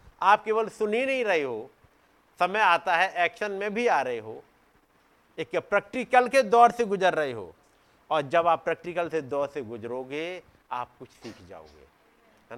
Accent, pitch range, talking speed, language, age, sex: native, 160-235 Hz, 175 wpm, Hindi, 50-69, male